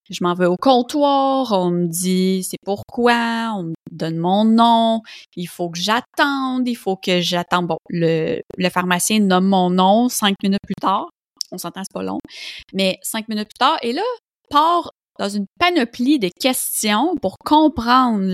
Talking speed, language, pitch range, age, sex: 180 wpm, French, 185-255 Hz, 20-39, female